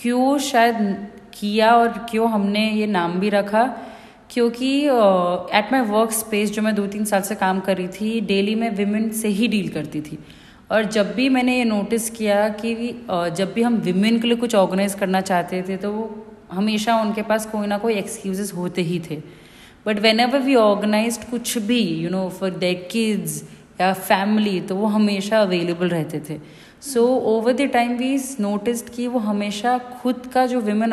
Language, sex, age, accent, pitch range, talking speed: Hindi, female, 30-49, native, 190-230 Hz, 180 wpm